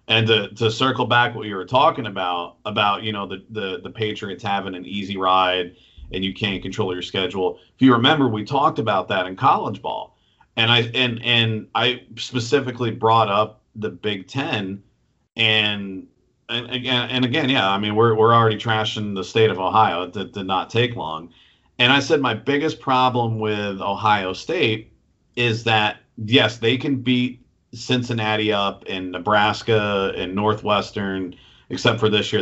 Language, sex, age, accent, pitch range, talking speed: English, male, 40-59, American, 100-125 Hz, 175 wpm